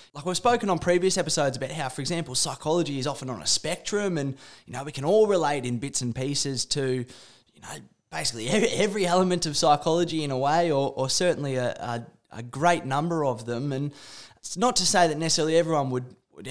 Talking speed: 210 wpm